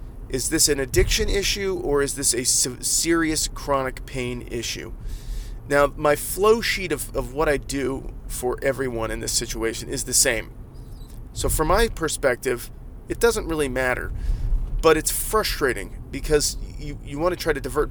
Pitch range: 120-160 Hz